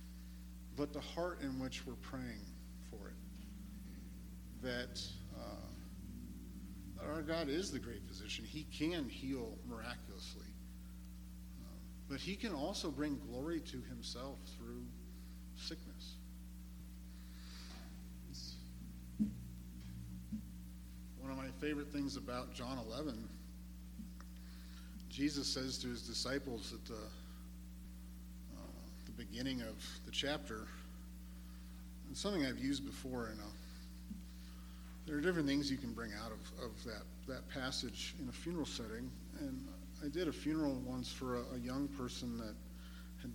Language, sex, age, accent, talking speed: English, male, 50-69, American, 120 wpm